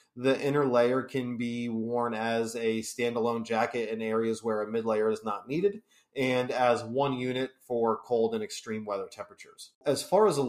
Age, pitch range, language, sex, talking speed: 30-49, 115-135 Hz, English, male, 185 wpm